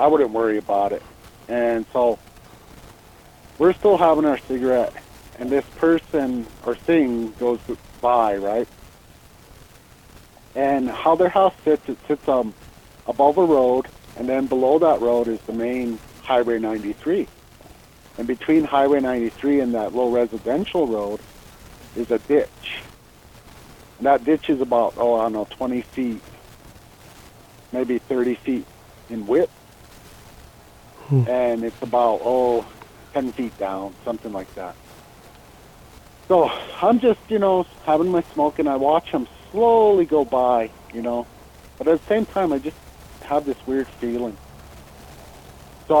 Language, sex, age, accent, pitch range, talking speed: English, male, 50-69, American, 110-145 Hz, 140 wpm